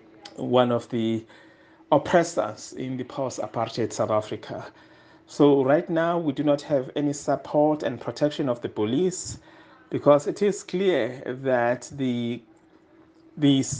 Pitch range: 120-150 Hz